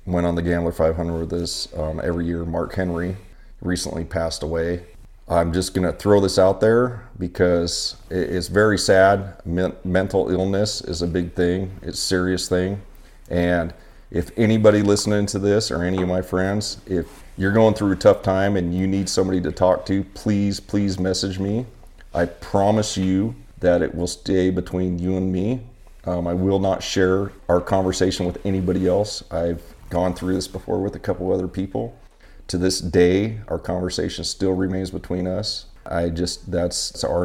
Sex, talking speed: male, 175 wpm